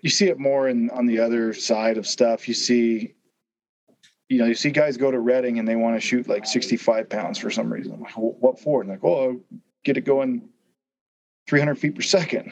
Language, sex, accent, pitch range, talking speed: English, male, American, 115-140 Hz, 215 wpm